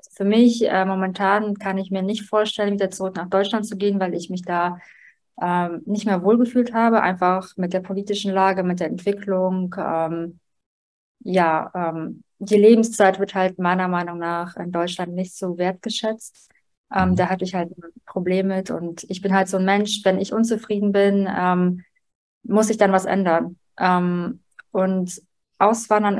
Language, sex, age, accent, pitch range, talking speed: German, female, 20-39, German, 180-205 Hz, 170 wpm